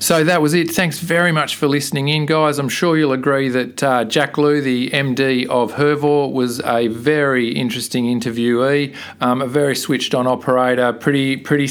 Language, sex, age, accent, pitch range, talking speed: English, male, 40-59, Australian, 125-140 Hz, 185 wpm